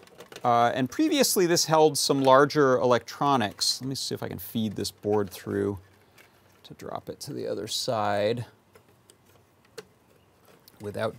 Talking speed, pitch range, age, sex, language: 140 wpm, 110-145 Hz, 30-49, male, English